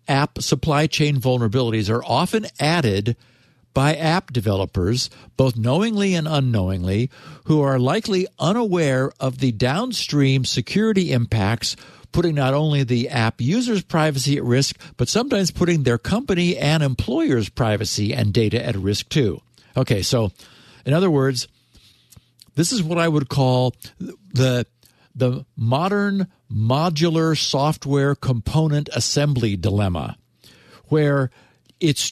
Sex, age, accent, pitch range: male, 50-69, American, 125-165 Hz